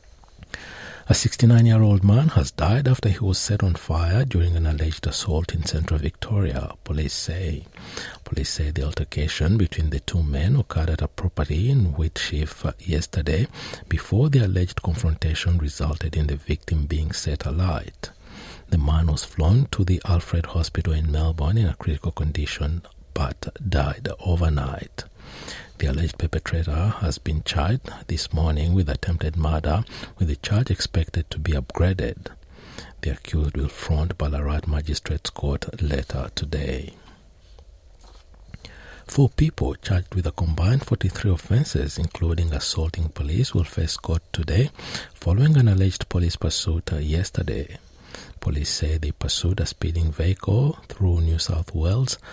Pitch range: 75-95 Hz